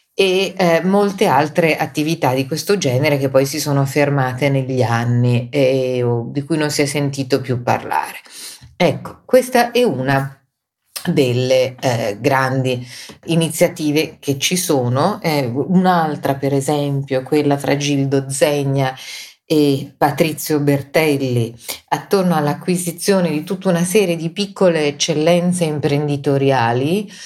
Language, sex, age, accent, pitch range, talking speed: Italian, female, 40-59, native, 135-175 Hz, 125 wpm